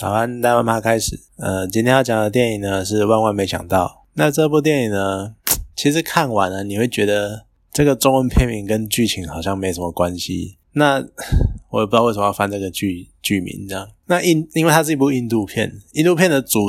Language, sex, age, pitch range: Chinese, male, 20-39, 95-125 Hz